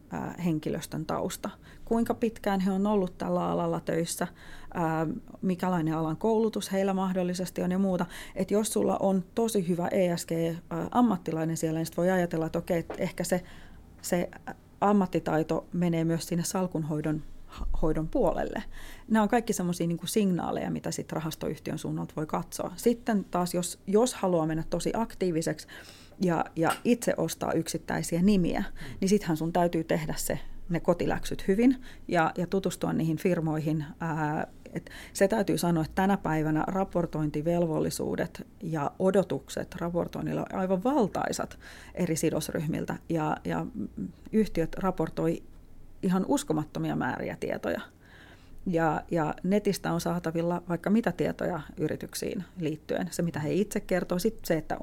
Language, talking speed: Finnish, 140 wpm